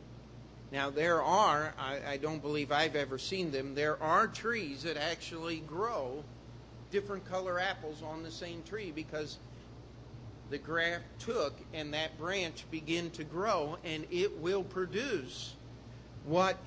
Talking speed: 140 wpm